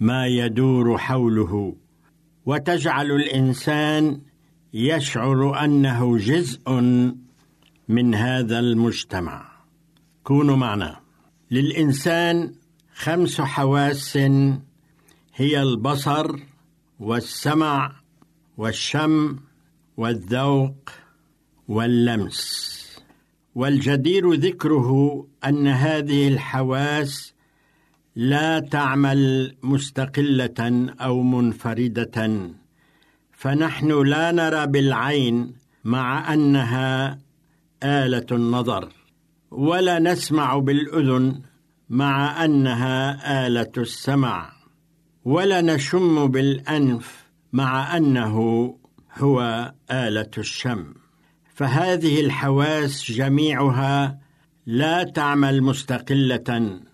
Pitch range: 125-155 Hz